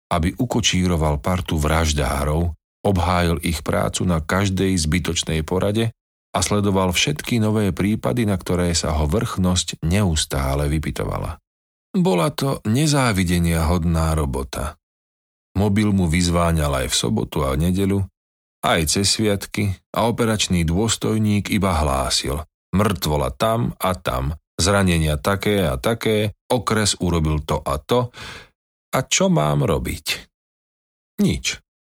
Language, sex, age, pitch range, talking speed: Slovak, male, 40-59, 75-105 Hz, 115 wpm